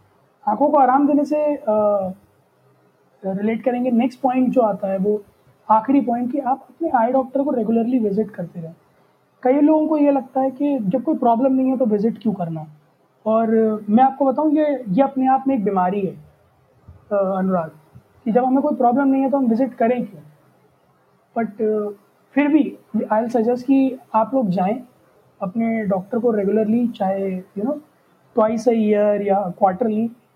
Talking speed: 180 wpm